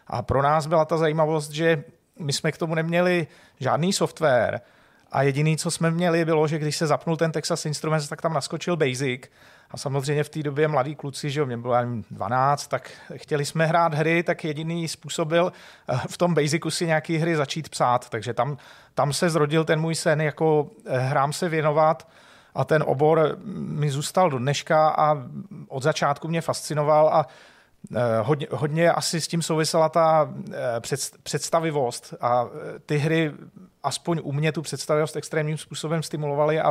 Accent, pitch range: native, 140-160 Hz